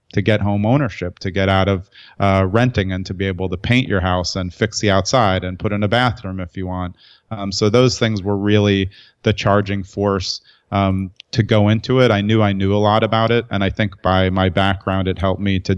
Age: 30-49